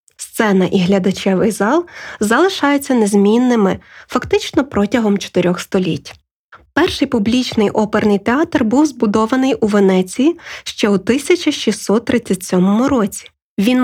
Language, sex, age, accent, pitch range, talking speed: Ukrainian, female, 20-39, native, 200-265 Hz, 100 wpm